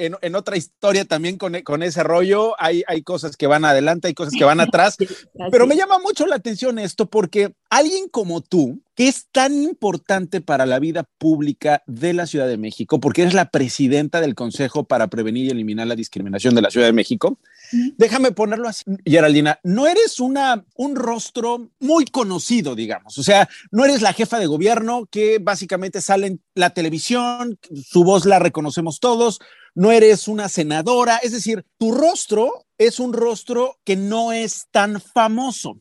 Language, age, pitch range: English, 40-59, 170-240 Hz